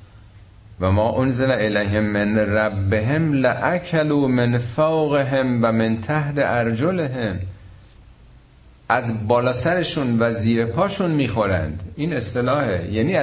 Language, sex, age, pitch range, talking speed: Persian, male, 50-69, 95-130 Hz, 105 wpm